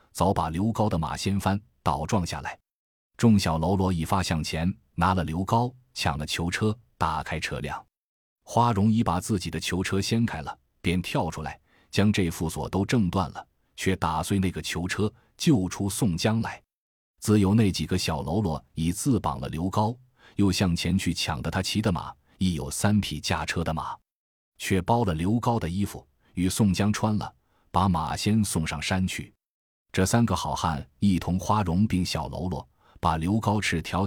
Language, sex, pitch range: Chinese, male, 85-105 Hz